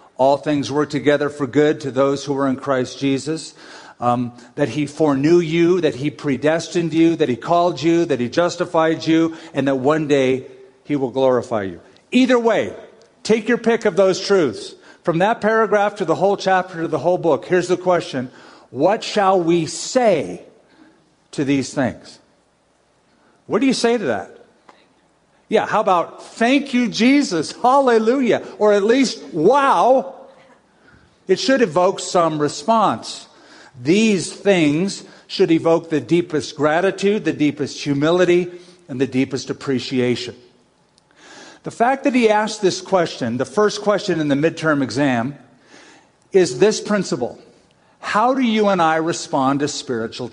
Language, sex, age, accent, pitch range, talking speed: English, male, 50-69, American, 140-195 Hz, 155 wpm